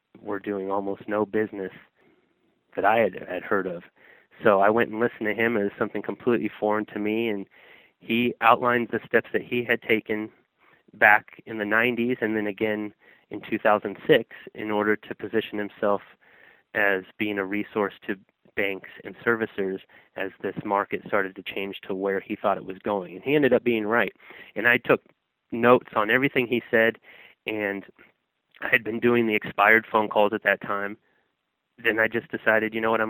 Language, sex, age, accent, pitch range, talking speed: English, male, 30-49, American, 100-110 Hz, 185 wpm